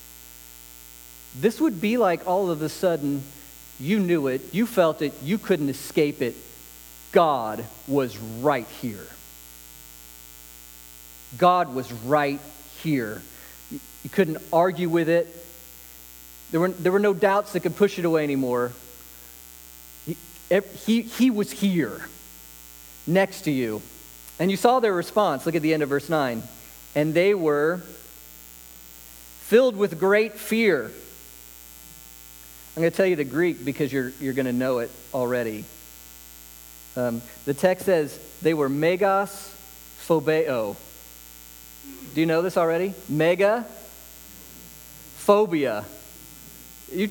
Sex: male